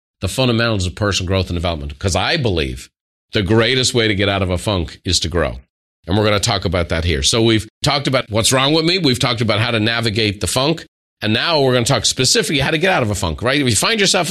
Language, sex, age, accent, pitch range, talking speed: English, male, 40-59, American, 100-145 Hz, 275 wpm